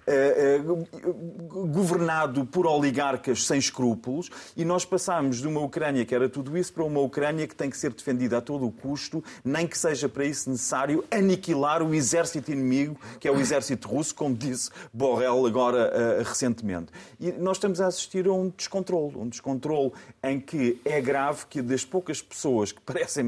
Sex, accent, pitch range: male, Portuguese, 130-180 Hz